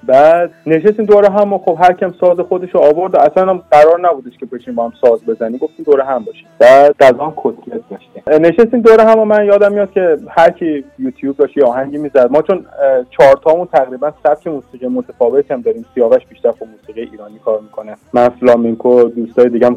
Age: 30-49